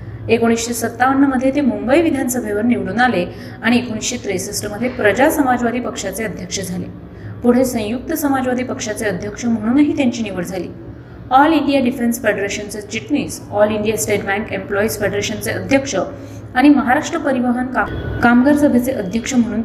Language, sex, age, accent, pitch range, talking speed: Marathi, female, 30-49, native, 215-260 Hz, 140 wpm